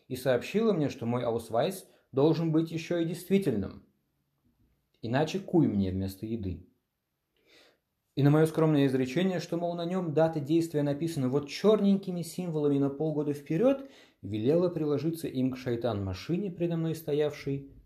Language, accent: Russian, native